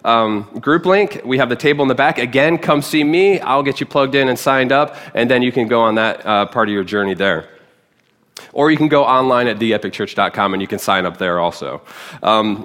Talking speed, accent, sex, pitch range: 235 wpm, American, male, 105-135 Hz